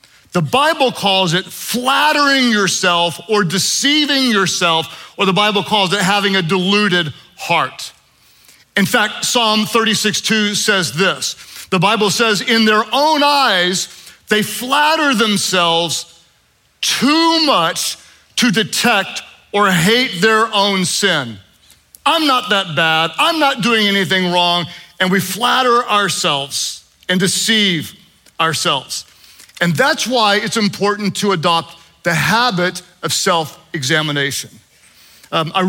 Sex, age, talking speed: male, 40-59, 120 wpm